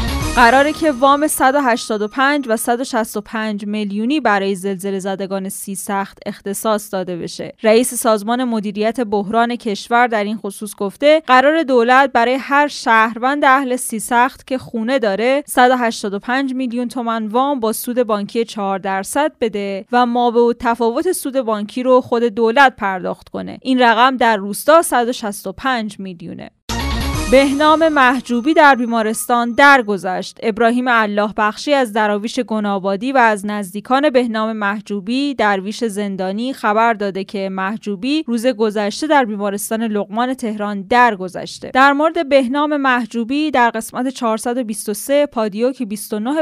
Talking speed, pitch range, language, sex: 130 wpm, 205-255 Hz, Persian, female